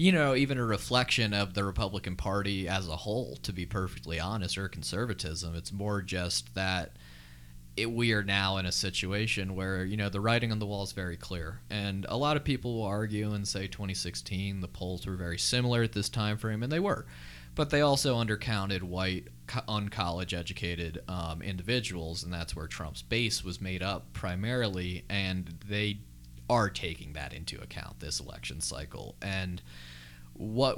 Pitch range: 90-105 Hz